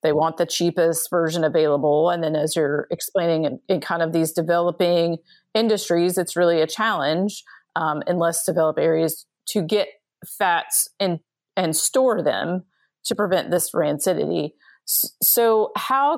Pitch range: 165-205 Hz